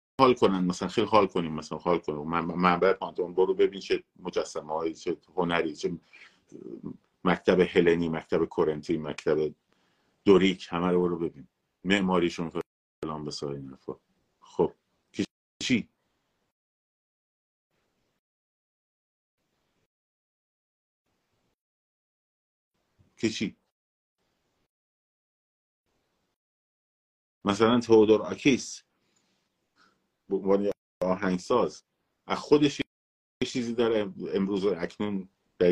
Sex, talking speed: male, 80 wpm